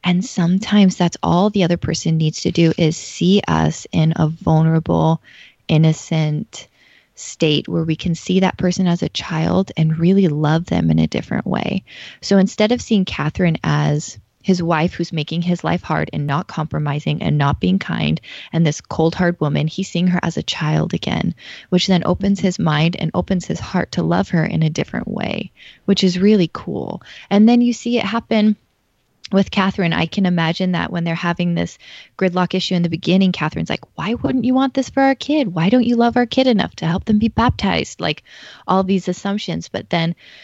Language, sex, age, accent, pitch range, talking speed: English, female, 20-39, American, 160-195 Hz, 200 wpm